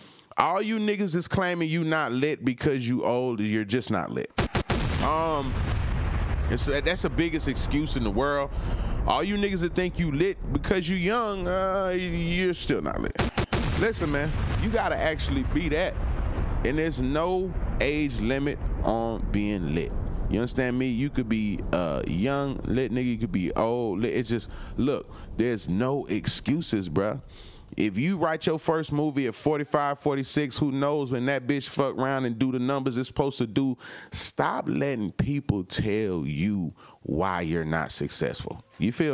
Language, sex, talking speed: English, male, 170 wpm